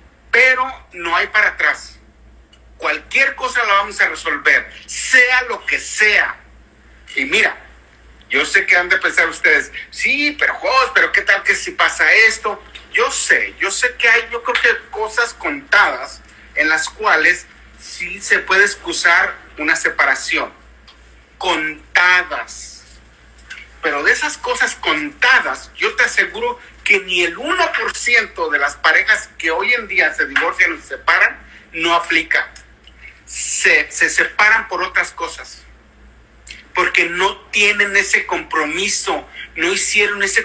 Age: 50-69